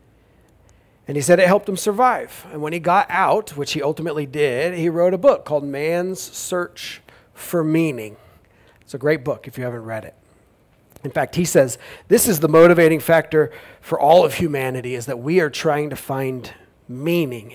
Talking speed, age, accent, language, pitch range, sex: 190 wpm, 40-59, American, English, 135-175 Hz, male